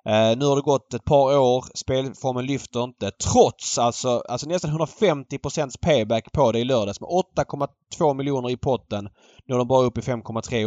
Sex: male